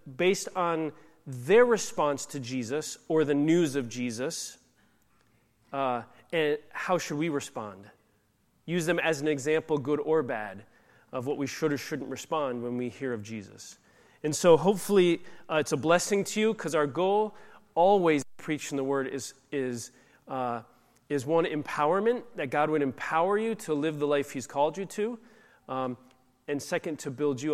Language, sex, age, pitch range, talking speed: English, male, 30-49, 135-165 Hz, 170 wpm